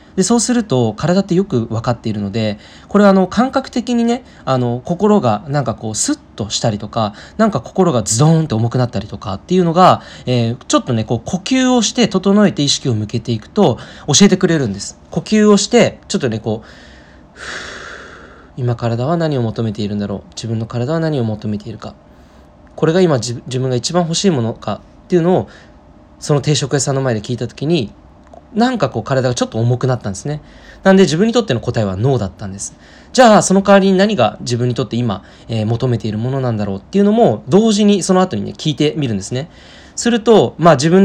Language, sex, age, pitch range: Japanese, male, 20-39, 110-185 Hz